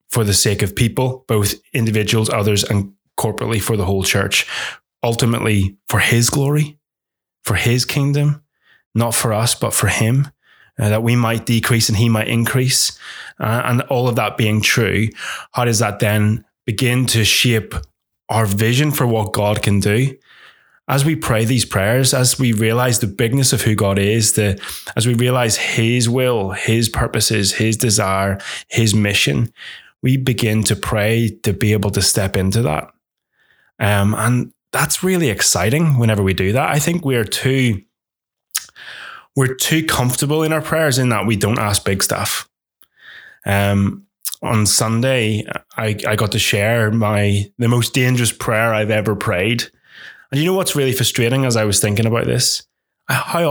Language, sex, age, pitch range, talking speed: English, male, 20-39, 105-125 Hz, 165 wpm